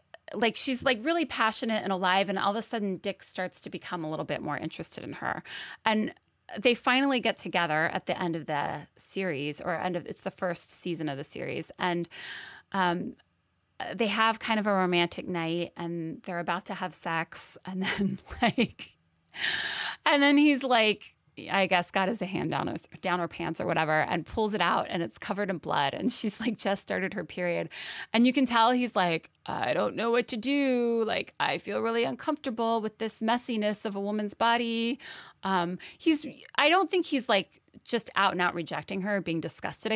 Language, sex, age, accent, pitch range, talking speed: English, female, 30-49, American, 175-235 Hz, 200 wpm